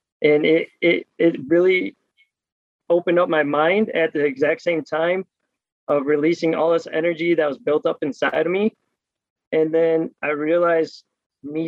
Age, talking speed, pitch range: 20-39, 160 wpm, 155-175 Hz